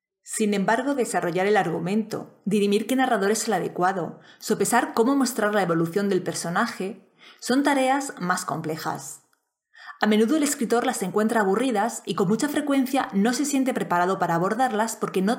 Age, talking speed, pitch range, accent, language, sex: 20-39, 160 wpm, 185-245 Hz, Spanish, Spanish, female